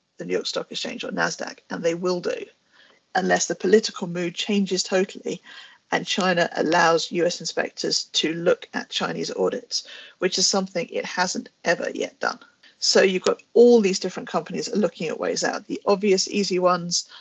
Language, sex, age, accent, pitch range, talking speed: English, female, 40-59, British, 180-220 Hz, 175 wpm